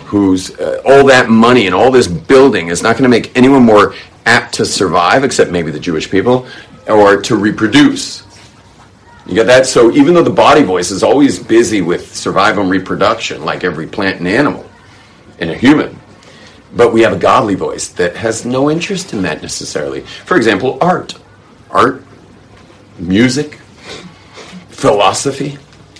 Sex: male